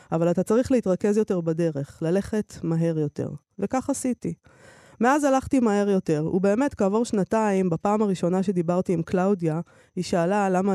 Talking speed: 145 wpm